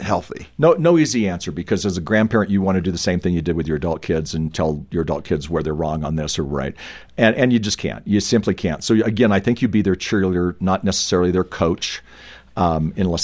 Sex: male